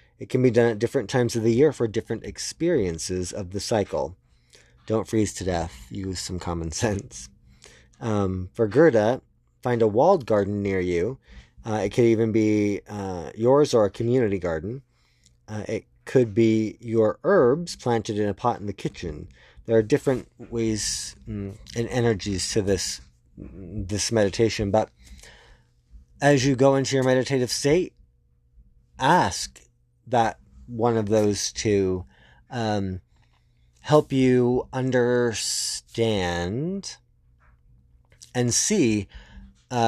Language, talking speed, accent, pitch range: English, 130 wpm, American, 85-120 Hz